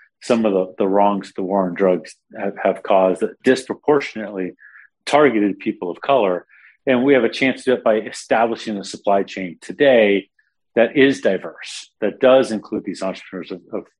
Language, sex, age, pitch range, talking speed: English, male, 40-59, 100-120 Hz, 180 wpm